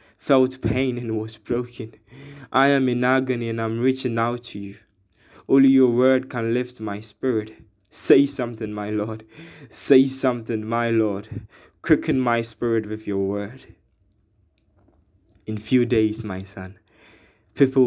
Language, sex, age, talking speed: English, male, 20-39, 140 wpm